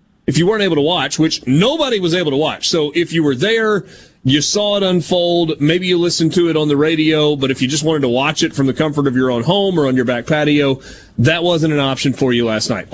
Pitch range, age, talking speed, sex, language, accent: 135-165 Hz, 30-49, 265 wpm, male, English, American